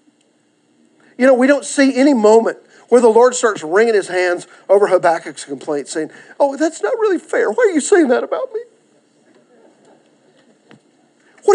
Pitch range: 175-295 Hz